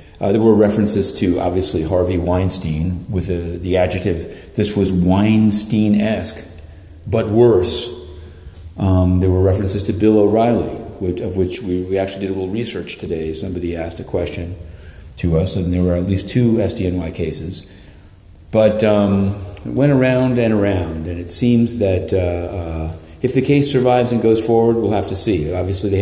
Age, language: 40-59, English